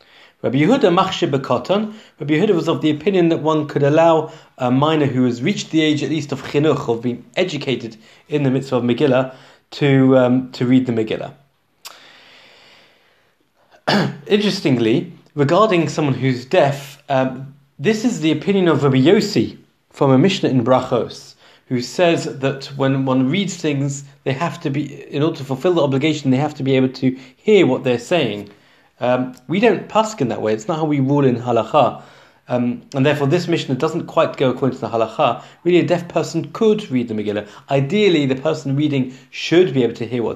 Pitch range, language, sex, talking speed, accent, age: 125-155 Hz, English, male, 185 wpm, British, 30-49